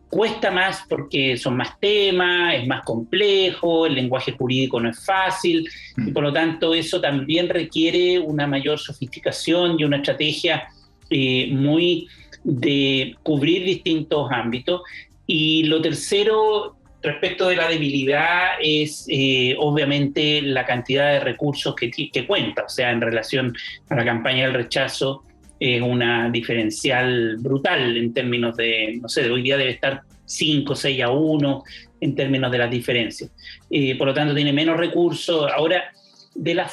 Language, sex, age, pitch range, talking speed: Spanish, male, 40-59, 135-170 Hz, 150 wpm